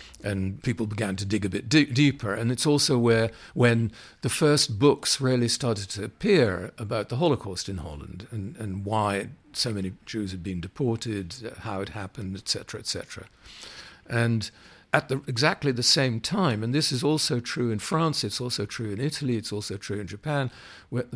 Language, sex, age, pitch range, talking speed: English, male, 50-69, 100-130 Hz, 190 wpm